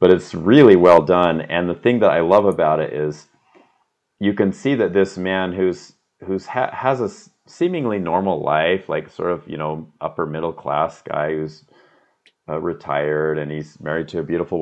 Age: 30-49